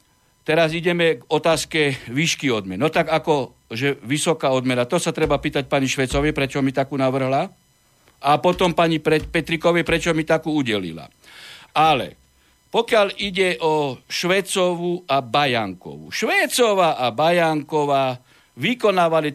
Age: 60-79